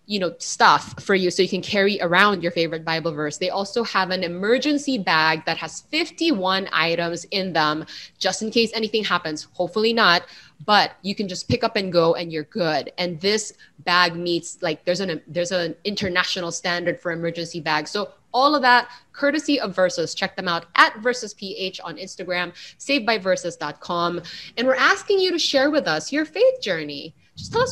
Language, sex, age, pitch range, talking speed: English, female, 20-39, 170-240 Hz, 185 wpm